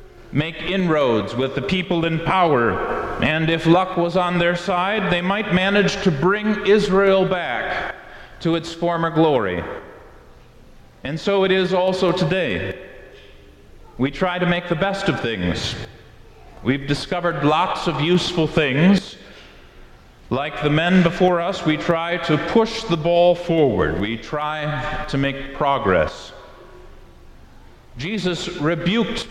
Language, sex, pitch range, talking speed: English, male, 150-190 Hz, 130 wpm